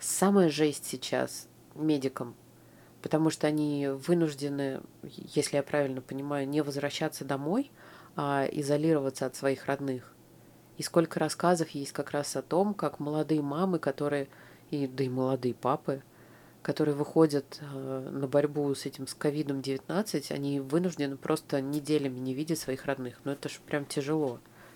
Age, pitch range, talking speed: 20-39, 135-160 Hz, 140 wpm